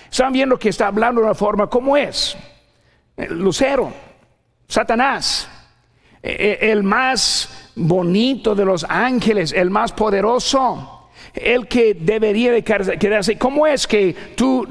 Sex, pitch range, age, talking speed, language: male, 160-220 Hz, 50-69, 120 wpm, Spanish